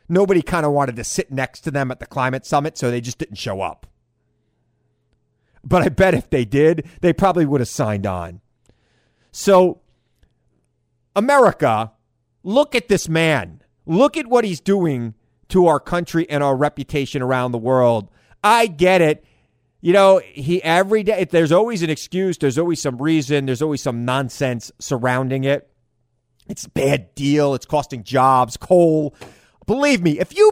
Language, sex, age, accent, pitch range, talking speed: English, male, 30-49, American, 120-175 Hz, 170 wpm